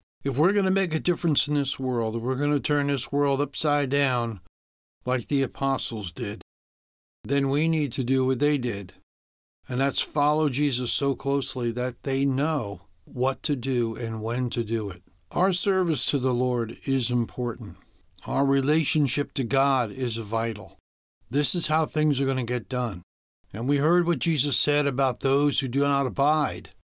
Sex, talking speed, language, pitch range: male, 185 wpm, English, 115-150 Hz